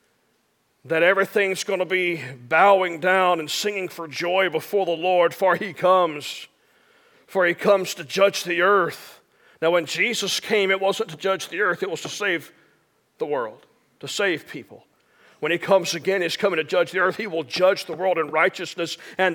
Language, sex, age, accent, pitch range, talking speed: English, male, 40-59, American, 185-235 Hz, 190 wpm